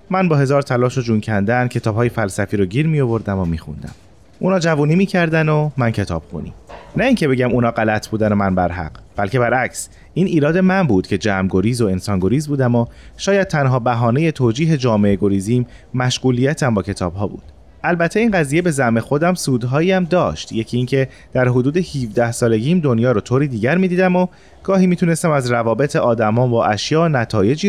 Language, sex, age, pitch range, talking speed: Persian, male, 30-49, 110-155 Hz, 180 wpm